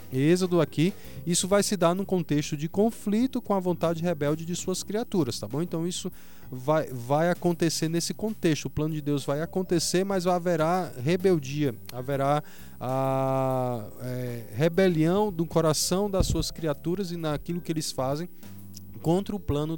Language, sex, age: Portuguese, male, 20-39